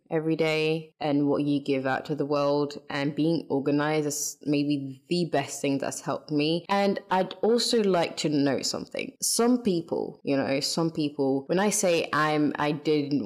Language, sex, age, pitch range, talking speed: English, female, 20-39, 145-180 Hz, 180 wpm